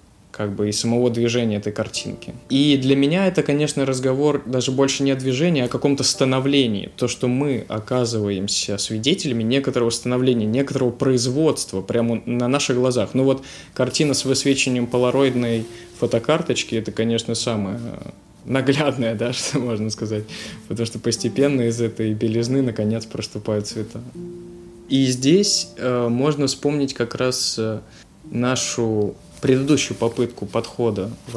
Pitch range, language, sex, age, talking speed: 110-135 Hz, Russian, male, 20-39, 140 wpm